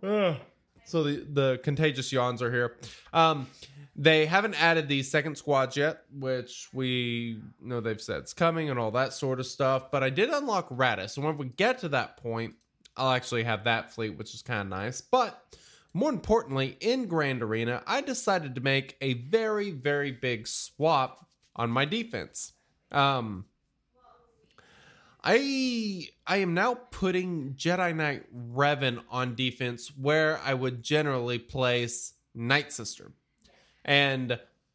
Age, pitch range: 20-39, 120-160 Hz